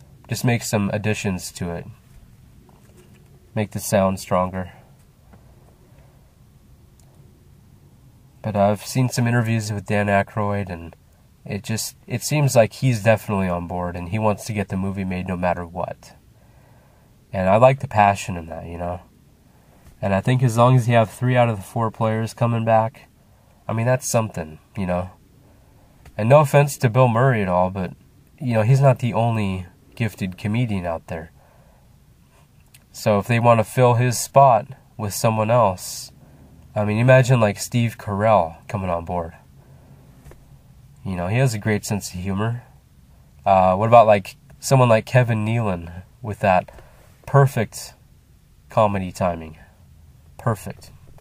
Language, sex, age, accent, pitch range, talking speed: English, male, 20-39, American, 90-120 Hz, 155 wpm